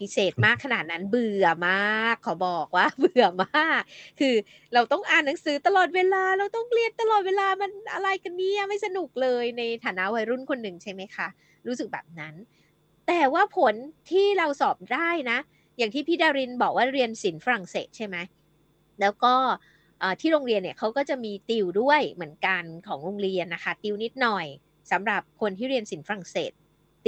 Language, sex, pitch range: Thai, female, 205-310 Hz